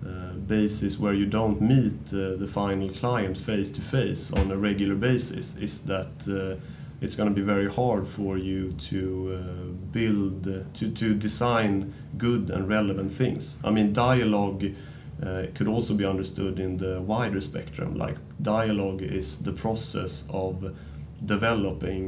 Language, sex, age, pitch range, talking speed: English, male, 30-49, 95-110 Hz, 155 wpm